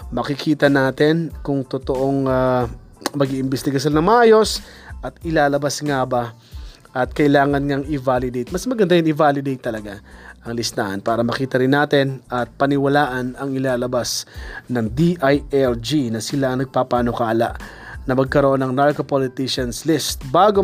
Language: Filipino